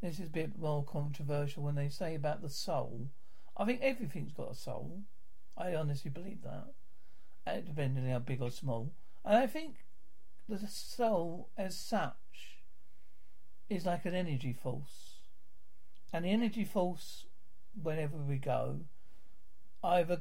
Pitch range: 145-200 Hz